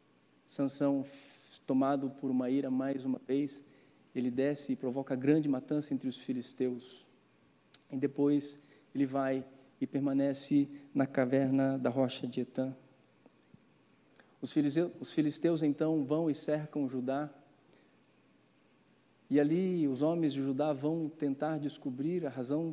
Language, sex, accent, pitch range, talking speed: Portuguese, male, Brazilian, 135-150 Hz, 125 wpm